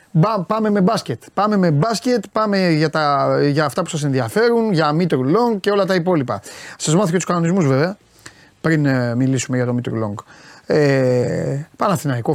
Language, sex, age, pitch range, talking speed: Greek, male, 30-49, 125-175 Hz, 170 wpm